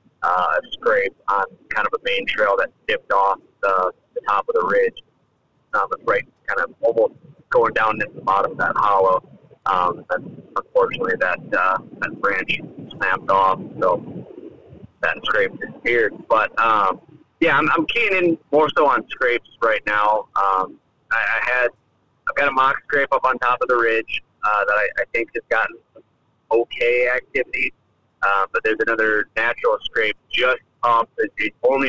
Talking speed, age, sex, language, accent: 175 wpm, 30-49, male, English, American